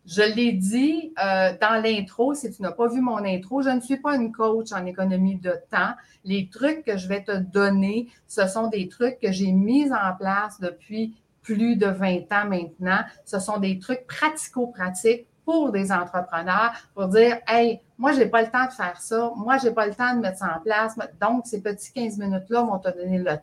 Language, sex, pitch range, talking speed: French, female, 185-240 Hz, 220 wpm